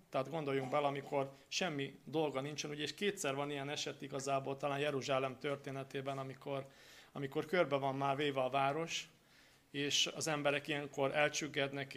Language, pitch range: Hungarian, 135-155 Hz